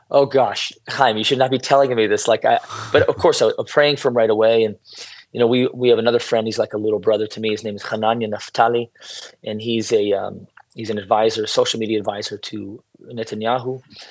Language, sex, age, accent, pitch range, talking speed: English, male, 30-49, American, 110-140 Hz, 225 wpm